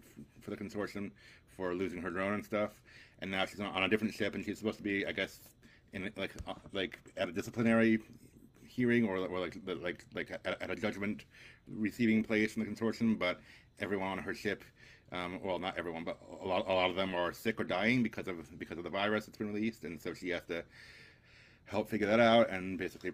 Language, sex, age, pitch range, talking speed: English, male, 30-49, 95-115 Hz, 215 wpm